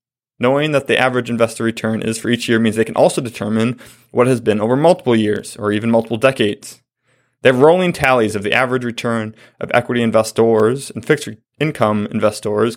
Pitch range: 110-130 Hz